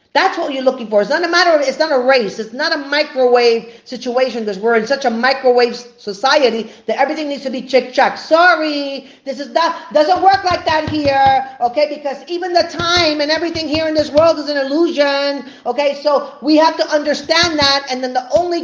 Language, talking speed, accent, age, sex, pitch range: English, 215 wpm, American, 40-59, female, 240-315 Hz